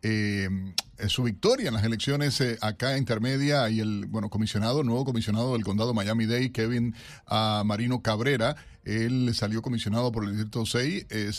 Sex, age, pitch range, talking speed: male, 40-59, 110-145 Hz, 165 wpm